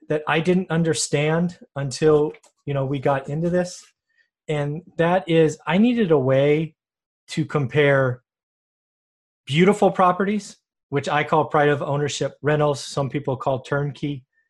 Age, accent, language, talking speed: 30-49, American, English, 135 wpm